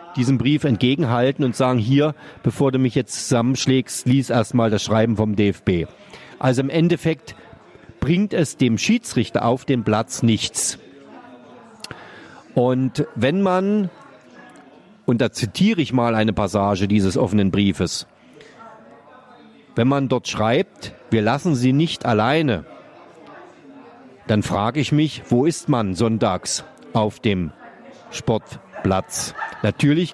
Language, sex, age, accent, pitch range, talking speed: German, male, 40-59, German, 115-150 Hz, 125 wpm